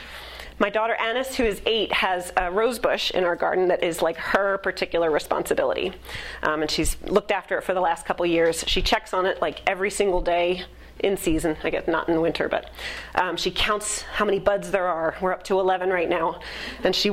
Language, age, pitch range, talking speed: English, 30-49, 180-220 Hz, 220 wpm